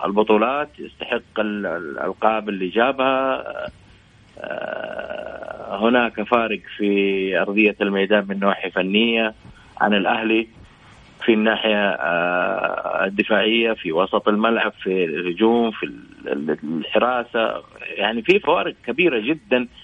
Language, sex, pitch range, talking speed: Arabic, male, 110-145 Hz, 90 wpm